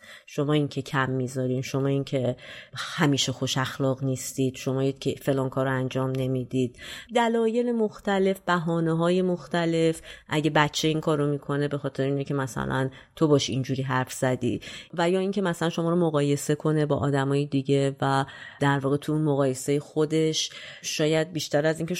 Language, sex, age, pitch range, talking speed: Persian, female, 30-49, 135-160 Hz, 165 wpm